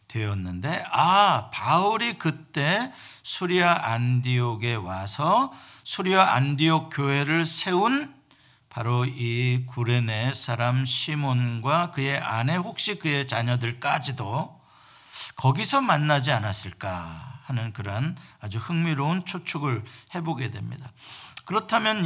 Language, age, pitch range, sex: Korean, 50-69, 115-160 Hz, male